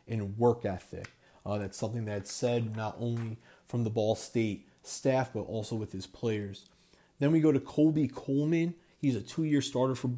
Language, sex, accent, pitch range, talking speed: English, male, American, 110-125 Hz, 185 wpm